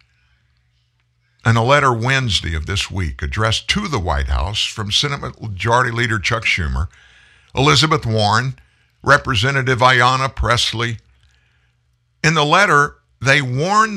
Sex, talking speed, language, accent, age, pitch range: male, 120 wpm, English, American, 60-79, 90-145 Hz